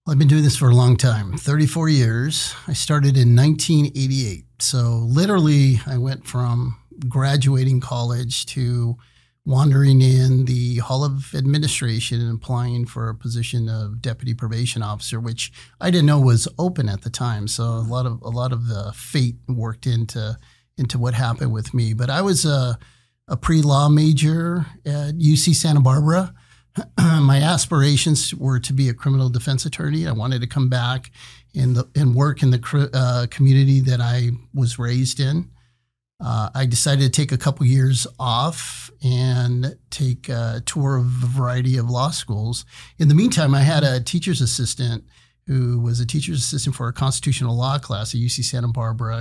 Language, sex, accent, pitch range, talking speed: English, male, American, 120-140 Hz, 170 wpm